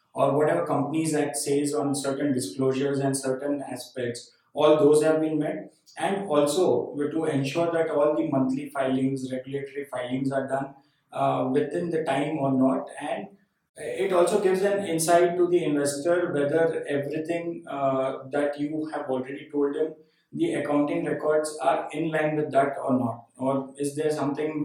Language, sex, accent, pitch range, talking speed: English, male, Indian, 135-160 Hz, 165 wpm